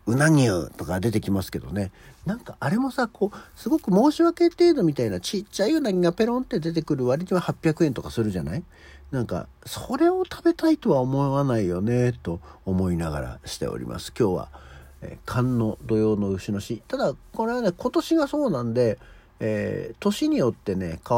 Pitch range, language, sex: 90-150 Hz, Japanese, male